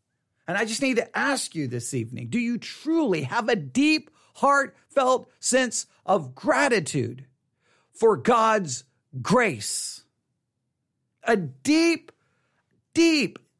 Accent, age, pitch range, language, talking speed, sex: American, 50-69, 190-285 Hz, English, 110 wpm, male